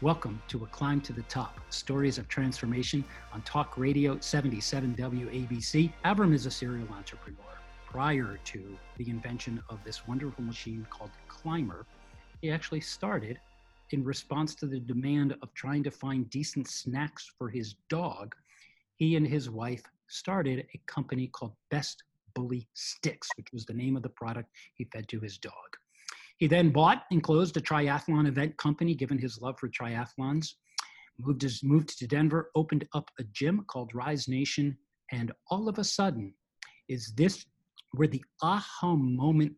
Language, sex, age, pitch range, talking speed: English, male, 40-59, 120-150 Hz, 160 wpm